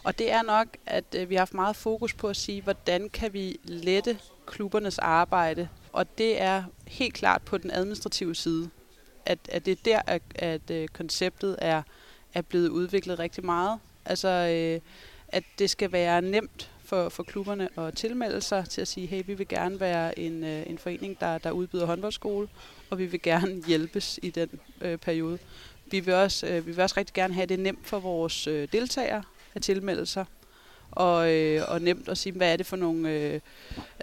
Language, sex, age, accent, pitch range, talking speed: Danish, female, 30-49, native, 170-210 Hz, 175 wpm